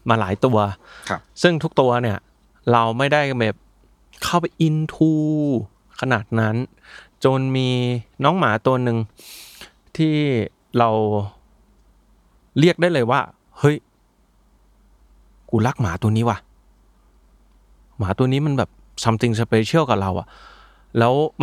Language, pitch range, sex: Thai, 110-140 Hz, male